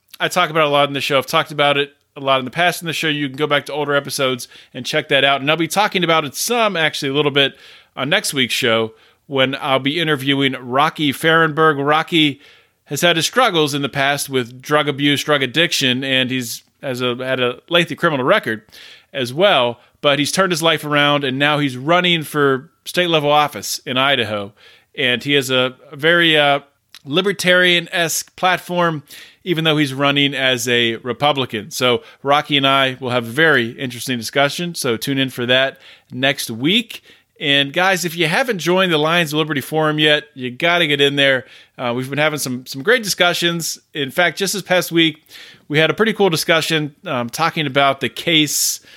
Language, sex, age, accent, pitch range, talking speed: English, male, 30-49, American, 130-165 Hz, 205 wpm